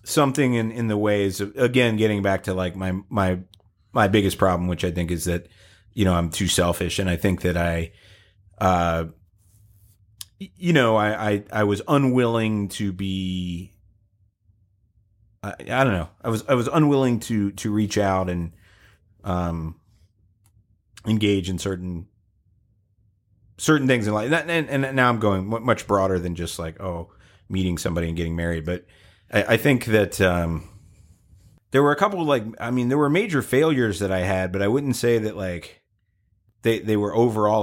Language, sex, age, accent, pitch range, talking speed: English, male, 30-49, American, 90-110 Hz, 175 wpm